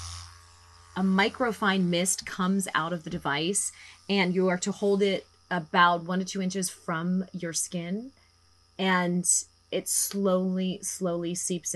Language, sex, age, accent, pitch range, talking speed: English, female, 30-49, American, 155-185 Hz, 140 wpm